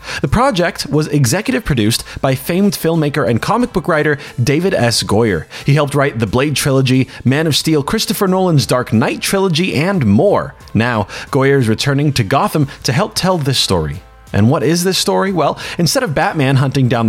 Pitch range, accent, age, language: 115-165 Hz, American, 30-49, English